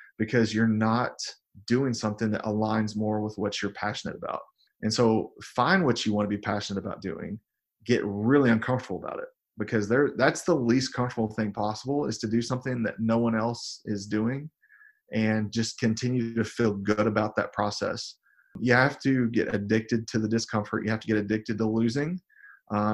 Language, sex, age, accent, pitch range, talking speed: English, male, 30-49, American, 110-130 Hz, 185 wpm